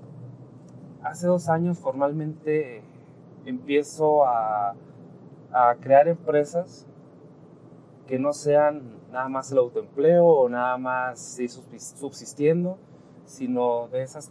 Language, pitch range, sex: Spanish, 130-155 Hz, male